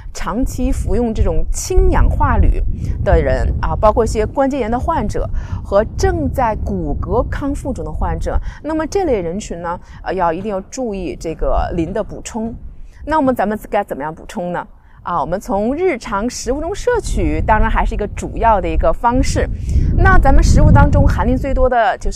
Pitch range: 175-260 Hz